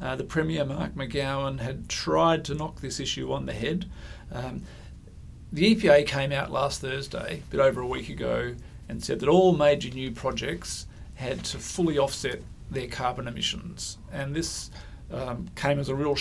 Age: 40-59